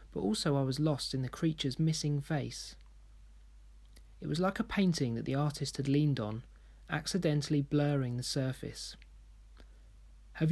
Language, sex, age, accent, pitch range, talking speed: English, male, 30-49, British, 125-170 Hz, 150 wpm